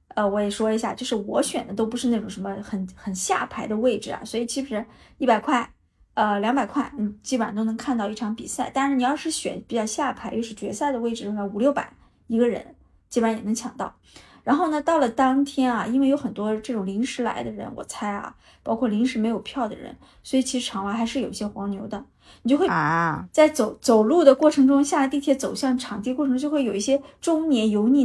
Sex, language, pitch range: female, Chinese, 215-260 Hz